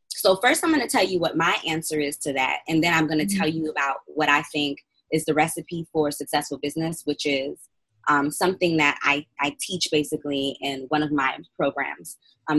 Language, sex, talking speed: English, female, 215 wpm